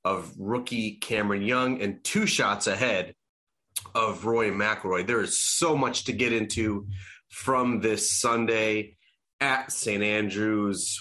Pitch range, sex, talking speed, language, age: 100-140 Hz, male, 130 wpm, English, 30-49